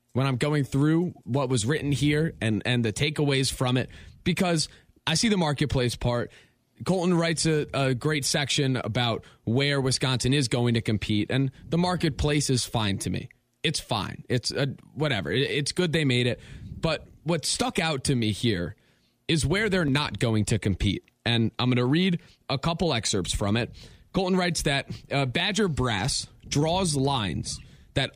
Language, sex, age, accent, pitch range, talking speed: English, male, 20-39, American, 120-155 Hz, 175 wpm